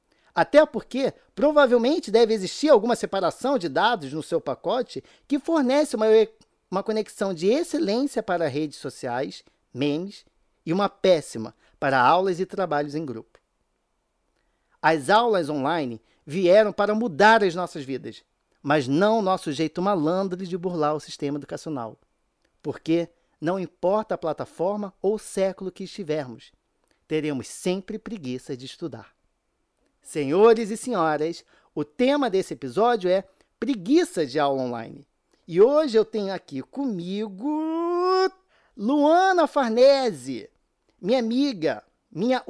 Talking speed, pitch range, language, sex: 125 wpm, 160-245 Hz, Portuguese, male